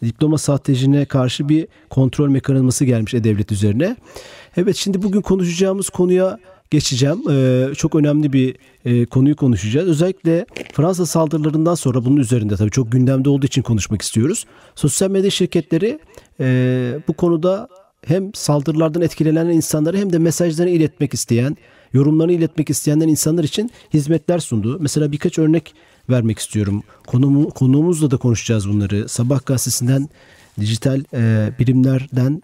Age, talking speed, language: 40-59, 135 wpm, Turkish